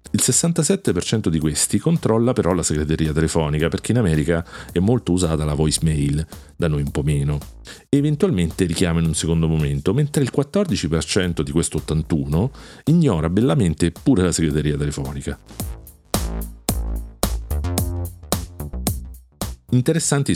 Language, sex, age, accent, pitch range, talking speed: Italian, male, 40-59, native, 75-95 Hz, 125 wpm